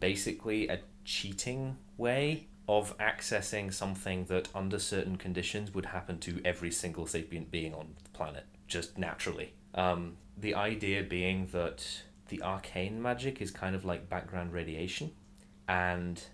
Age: 20-39